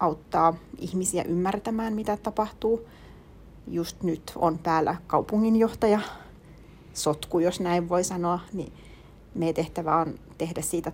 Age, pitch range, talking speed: 30-49, 165-210 Hz, 115 wpm